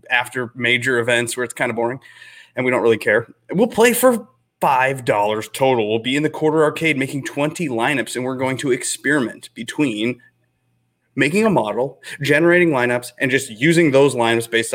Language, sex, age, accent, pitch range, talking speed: English, male, 30-49, American, 115-155 Hz, 185 wpm